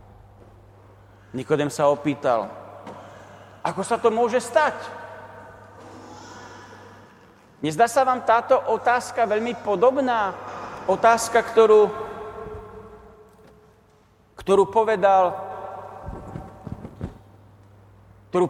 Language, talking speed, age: Slovak, 65 wpm, 40-59